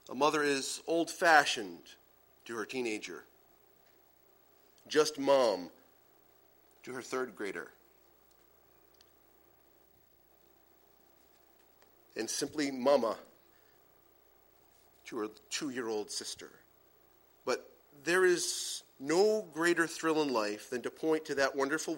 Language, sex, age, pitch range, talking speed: English, male, 40-59, 140-225 Hz, 95 wpm